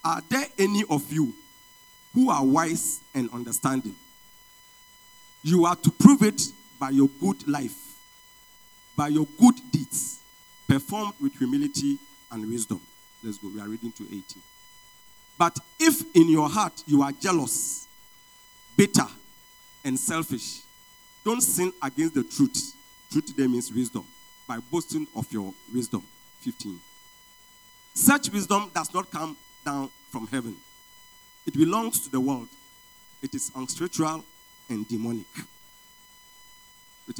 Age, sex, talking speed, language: 50-69, male, 130 wpm, English